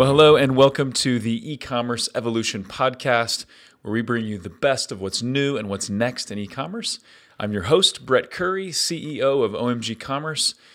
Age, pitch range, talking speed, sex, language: 30-49, 105-140 Hz, 190 wpm, male, English